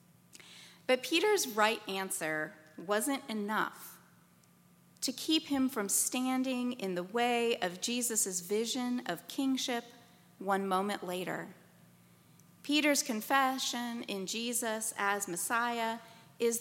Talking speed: 105 wpm